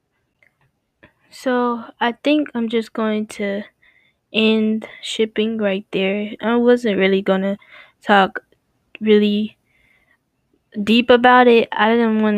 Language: English